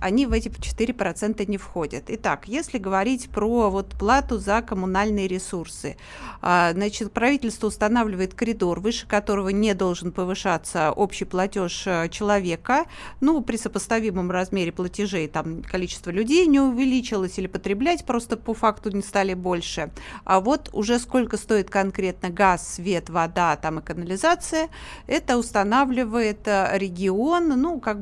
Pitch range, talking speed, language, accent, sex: 185-240 Hz, 135 wpm, Russian, native, female